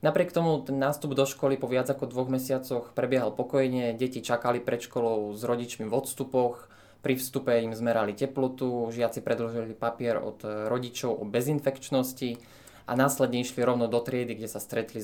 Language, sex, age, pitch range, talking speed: Slovak, male, 20-39, 120-140 Hz, 165 wpm